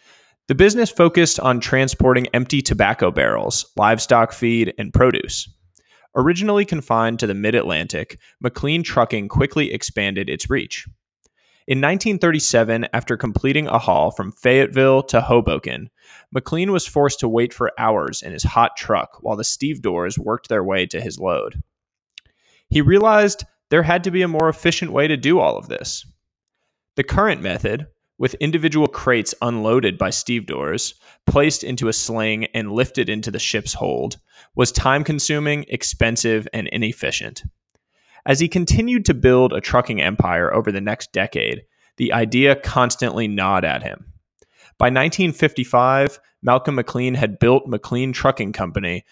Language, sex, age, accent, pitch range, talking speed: English, male, 20-39, American, 115-150 Hz, 150 wpm